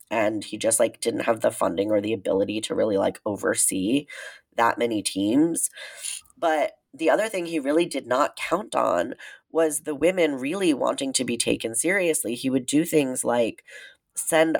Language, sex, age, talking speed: English, female, 10-29, 175 wpm